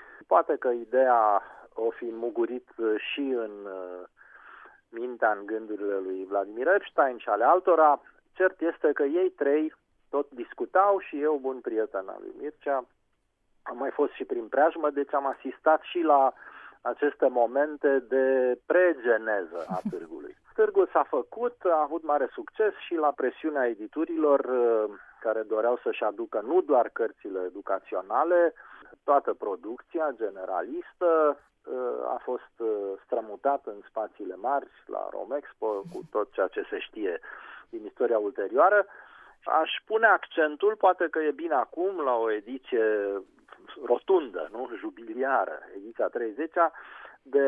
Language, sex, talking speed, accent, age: Romanian, male, 130 wpm, native, 40-59